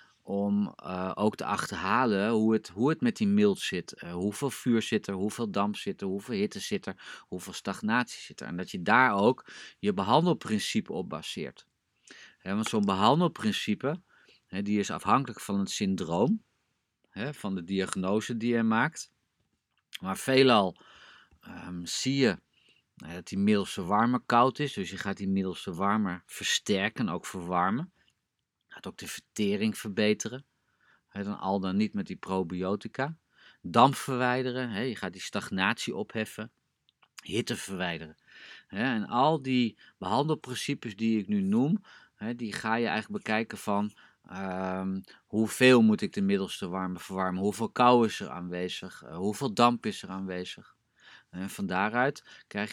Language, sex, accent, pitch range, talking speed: Dutch, male, Dutch, 100-140 Hz, 145 wpm